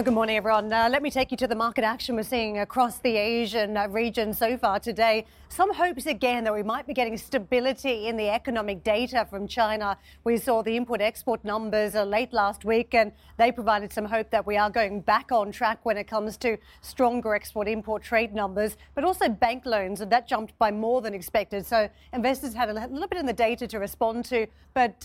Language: English